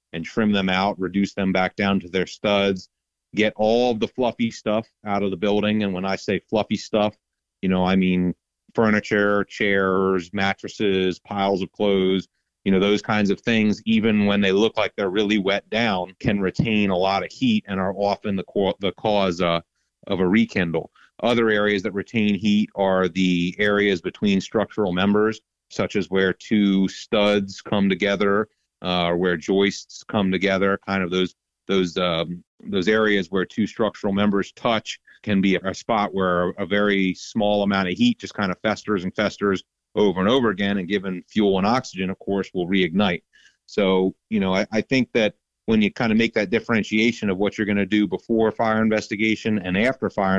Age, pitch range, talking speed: 30-49, 95-105 Hz, 190 wpm